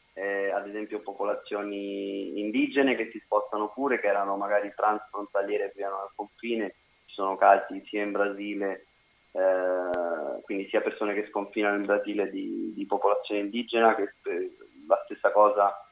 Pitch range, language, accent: 100-120 Hz, Italian, native